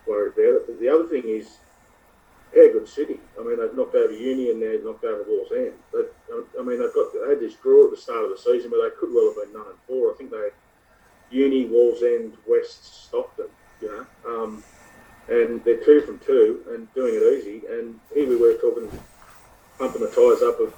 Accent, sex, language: Australian, male, English